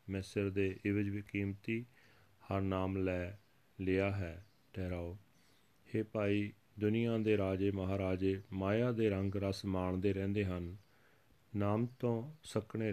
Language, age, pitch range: Punjabi, 30-49, 95-110 Hz